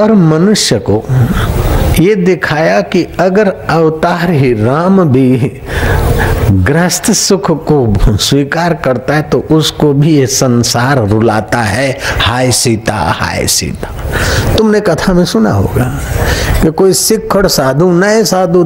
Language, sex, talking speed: Hindi, male, 125 wpm